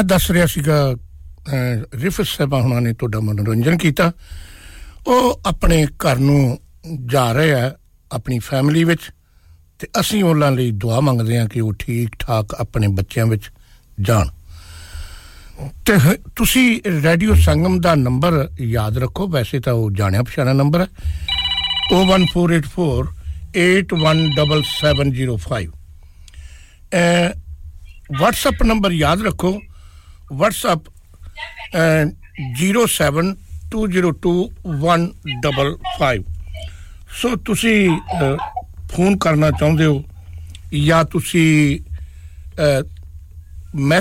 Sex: male